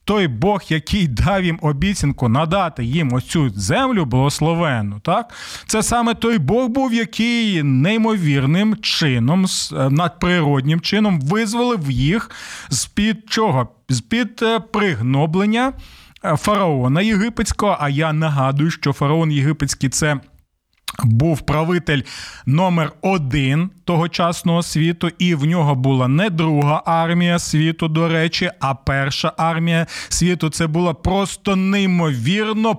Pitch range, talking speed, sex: 150-205 Hz, 115 wpm, male